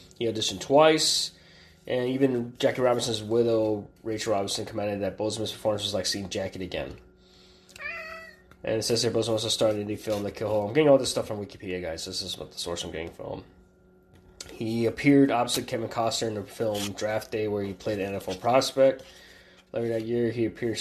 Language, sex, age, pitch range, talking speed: English, male, 20-39, 95-115 Hz, 200 wpm